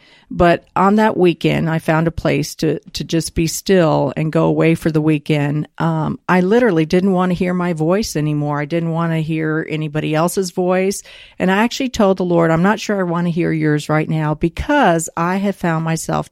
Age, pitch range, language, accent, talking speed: 50-69, 155-185 Hz, English, American, 215 wpm